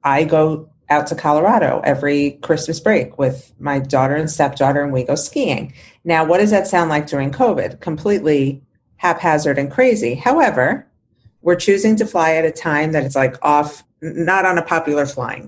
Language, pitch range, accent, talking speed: English, 140-180 Hz, American, 180 wpm